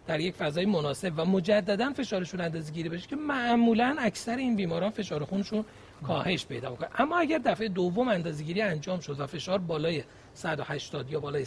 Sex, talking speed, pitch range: male, 165 wpm, 155-215 Hz